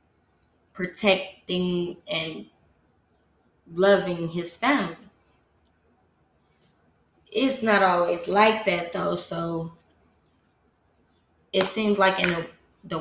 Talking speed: 85 wpm